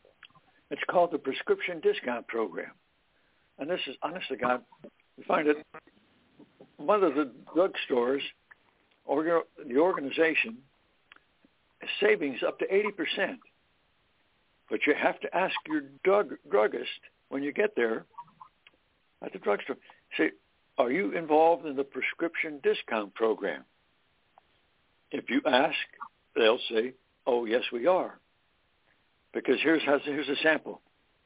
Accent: American